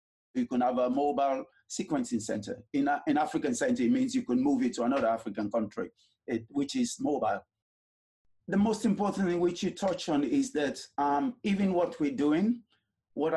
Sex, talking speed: male, 185 wpm